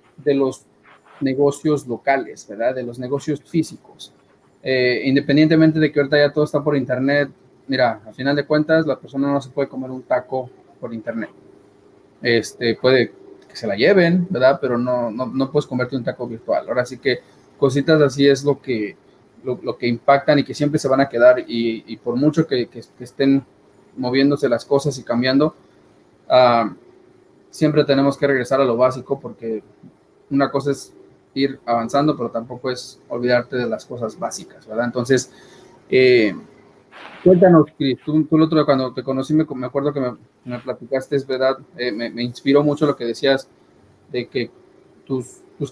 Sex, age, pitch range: male, 30-49, 125-150 Hz